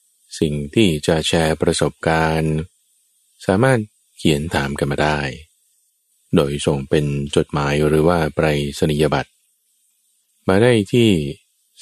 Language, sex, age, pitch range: Thai, male, 20-39, 75-90 Hz